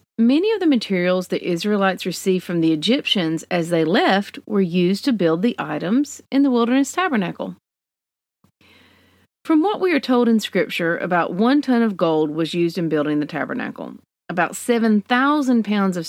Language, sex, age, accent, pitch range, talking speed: English, female, 40-59, American, 170-240 Hz, 170 wpm